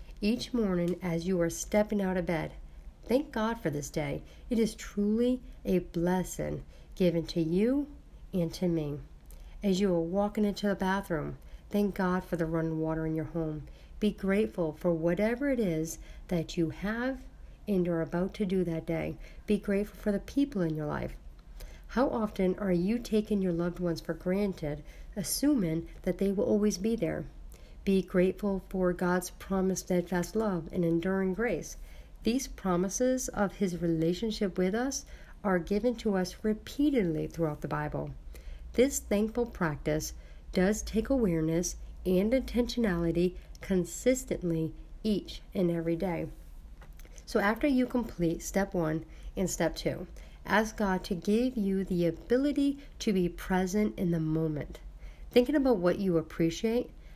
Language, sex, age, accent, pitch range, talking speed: English, female, 50-69, American, 165-215 Hz, 155 wpm